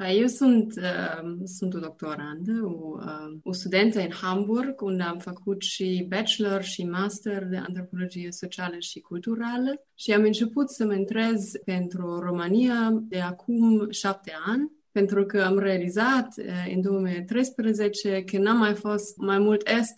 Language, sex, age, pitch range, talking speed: Romanian, female, 20-39, 180-220 Hz, 140 wpm